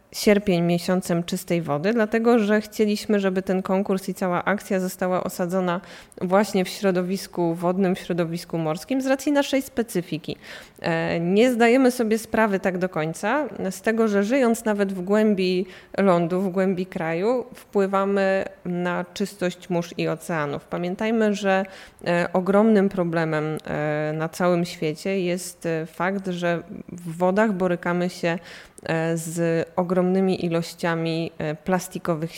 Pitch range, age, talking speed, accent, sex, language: 170-200 Hz, 20-39, 125 wpm, native, female, Polish